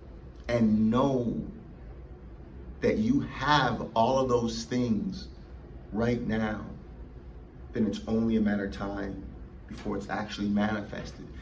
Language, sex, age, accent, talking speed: English, male, 40-59, American, 115 wpm